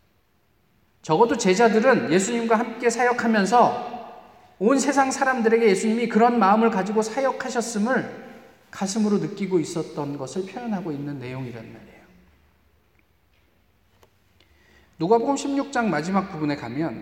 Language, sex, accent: Korean, male, native